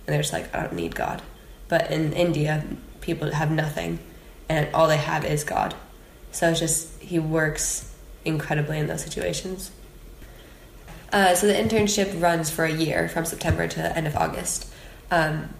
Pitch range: 150-165 Hz